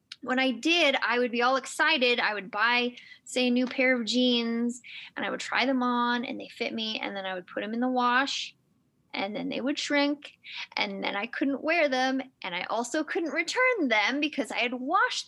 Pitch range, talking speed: 215-270 Hz, 225 wpm